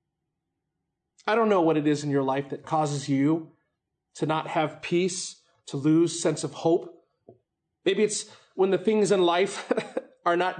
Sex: male